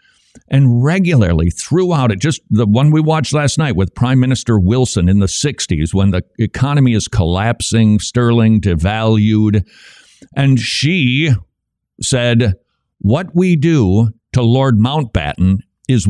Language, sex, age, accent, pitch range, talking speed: English, male, 60-79, American, 100-150 Hz, 130 wpm